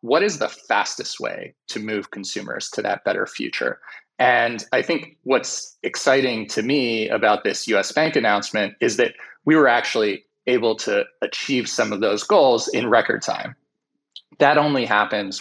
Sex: male